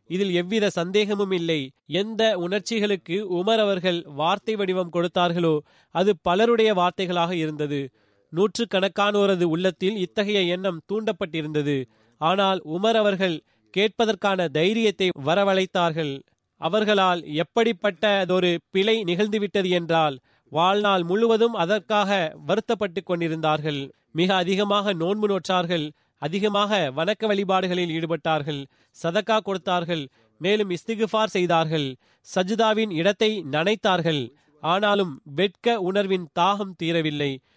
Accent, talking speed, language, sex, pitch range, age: native, 90 wpm, Tamil, male, 165-210 Hz, 30-49